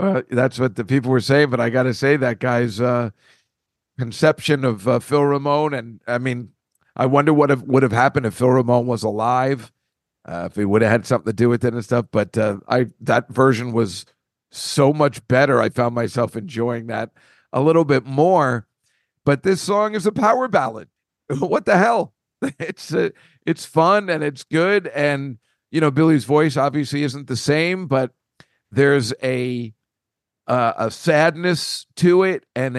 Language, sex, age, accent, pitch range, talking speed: English, male, 50-69, American, 120-150 Hz, 185 wpm